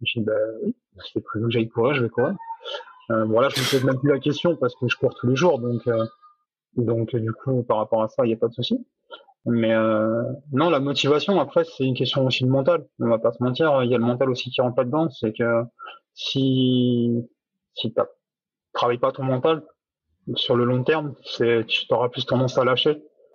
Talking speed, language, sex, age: 240 wpm, French, male, 30-49